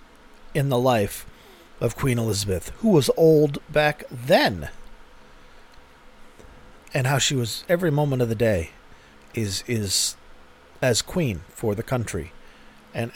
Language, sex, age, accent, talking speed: English, male, 40-59, American, 130 wpm